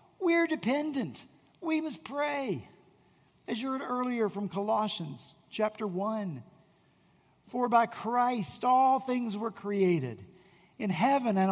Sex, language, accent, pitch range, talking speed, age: male, English, American, 180-255 Hz, 120 wpm, 50-69